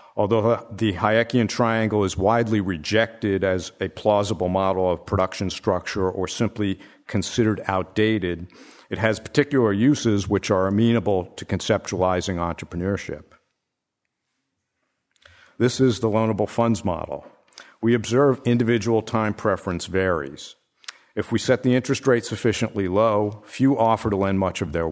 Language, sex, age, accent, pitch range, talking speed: English, male, 50-69, American, 95-115 Hz, 130 wpm